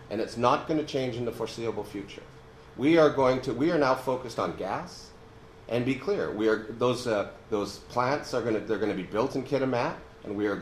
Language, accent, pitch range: English, American, 110-140 Hz